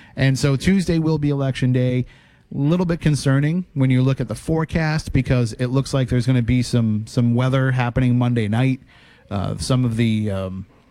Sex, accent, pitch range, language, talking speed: male, American, 115-135 Hz, English, 200 wpm